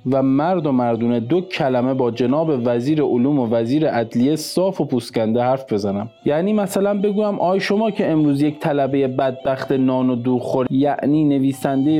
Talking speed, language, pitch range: 170 wpm, Persian, 125-160 Hz